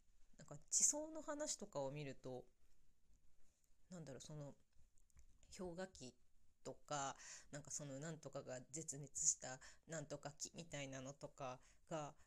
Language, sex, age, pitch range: Japanese, female, 20-39, 135-175 Hz